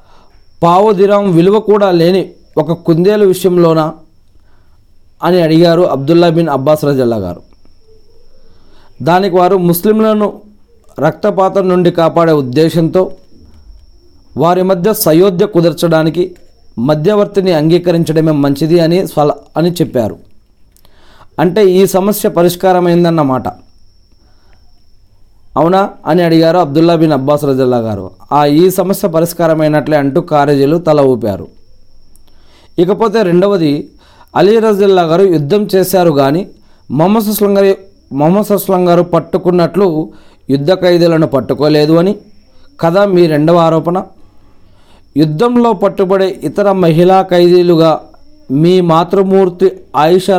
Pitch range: 130-185 Hz